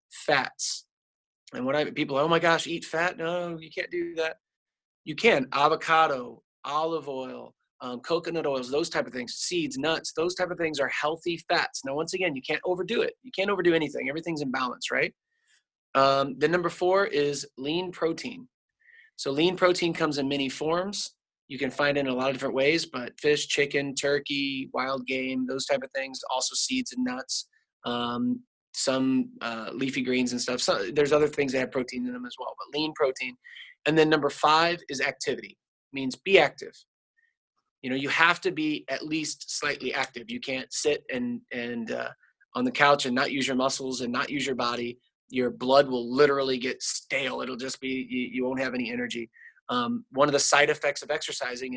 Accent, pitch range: American, 130-175 Hz